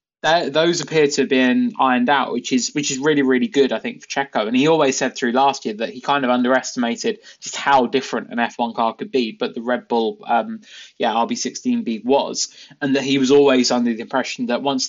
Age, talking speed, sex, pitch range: 20-39, 230 wpm, male, 120-140 Hz